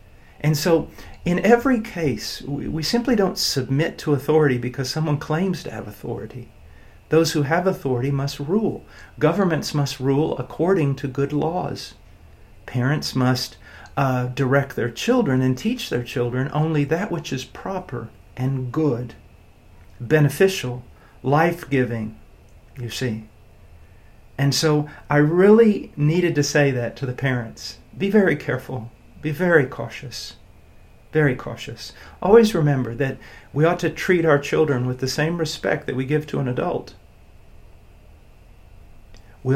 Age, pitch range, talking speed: 50-69, 120-155 Hz, 135 wpm